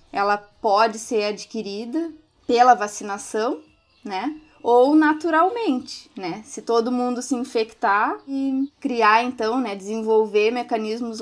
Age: 20-39